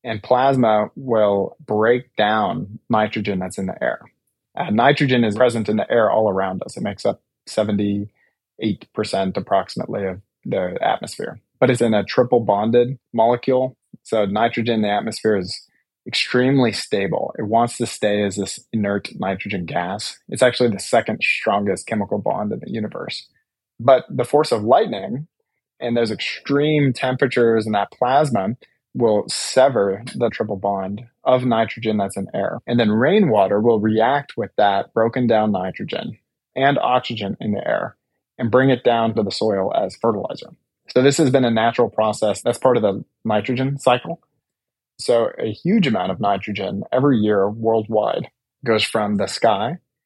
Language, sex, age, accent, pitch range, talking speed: English, male, 20-39, American, 105-125 Hz, 160 wpm